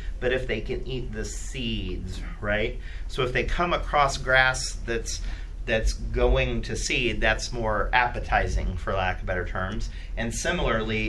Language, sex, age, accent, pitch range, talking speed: English, male, 40-59, American, 85-135 Hz, 155 wpm